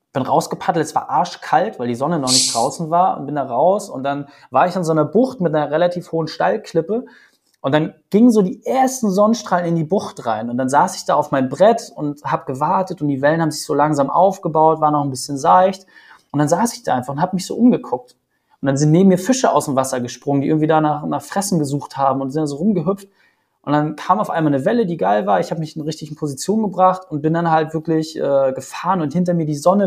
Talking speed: 255 wpm